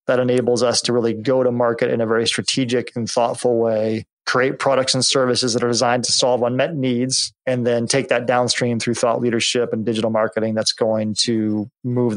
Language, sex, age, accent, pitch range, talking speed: English, male, 30-49, American, 115-135 Hz, 200 wpm